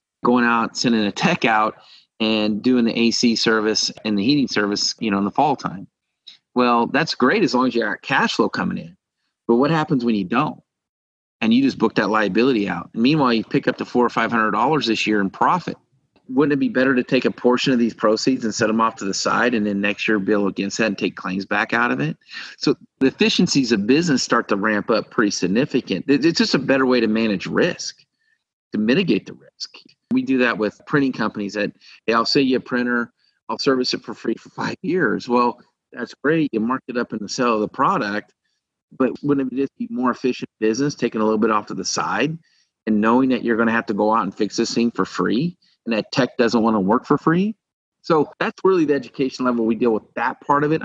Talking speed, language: 240 wpm, English